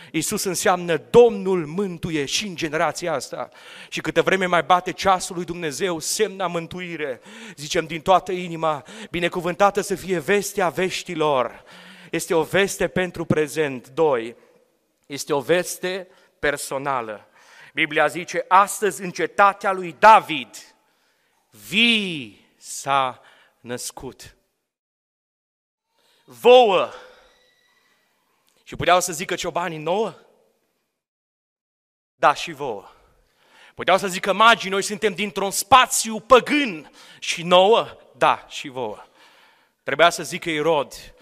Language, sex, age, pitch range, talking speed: Romanian, male, 40-59, 160-200 Hz, 110 wpm